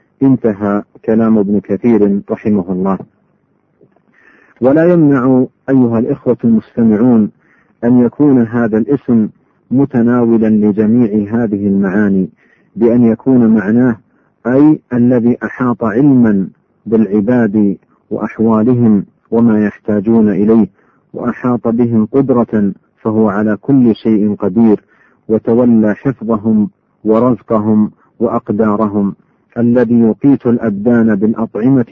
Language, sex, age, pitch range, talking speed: Arabic, male, 50-69, 105-120 Hz, 90 wpm